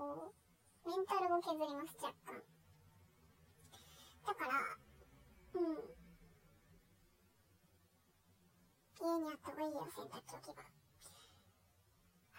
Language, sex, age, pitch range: Japanese, male, 10-29, 280-390 Hz